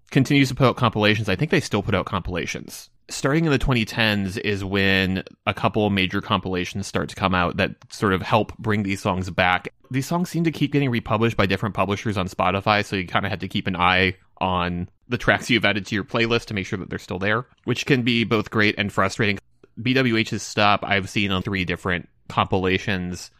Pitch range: 95-115 Hz